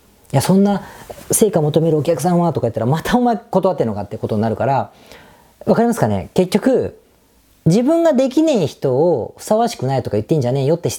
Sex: female